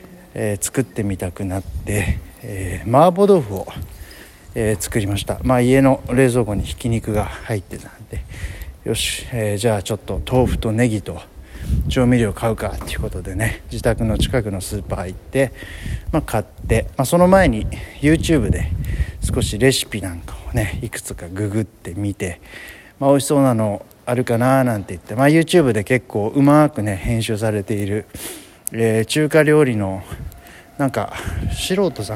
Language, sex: Japanese, male